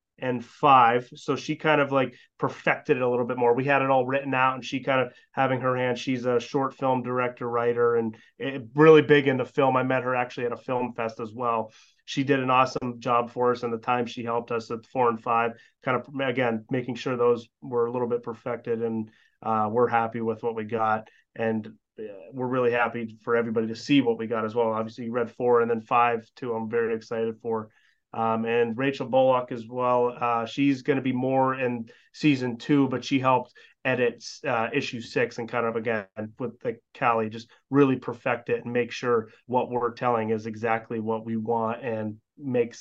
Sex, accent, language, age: male, American, English, 30-49